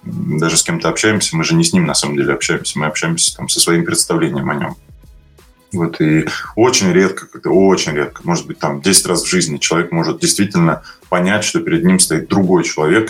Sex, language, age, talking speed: male, Russian, 20-39, 200 wpm